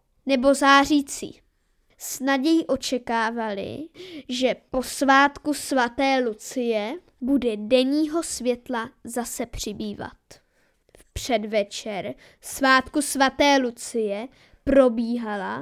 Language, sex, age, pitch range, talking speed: Czech, female, 20-39, 235-280 Hz, 75 wpm